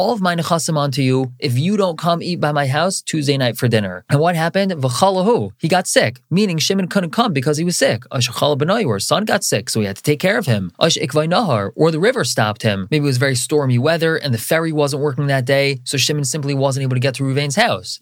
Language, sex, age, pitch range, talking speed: English, male, 20-39, 130-165 Hz, 245 wpm